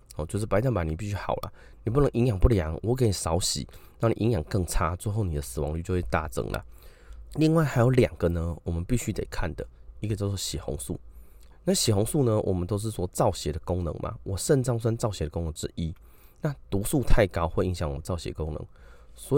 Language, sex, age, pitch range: Chinese, male, 30-49, 80-110 Hz